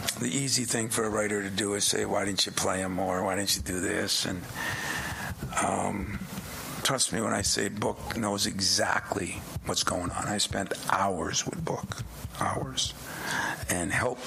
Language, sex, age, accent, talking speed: English, male, 50-69, American, 175 wpm